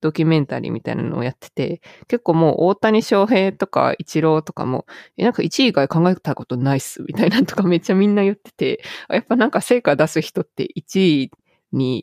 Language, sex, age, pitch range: Japanese, female, 20-39, 140-195 Hz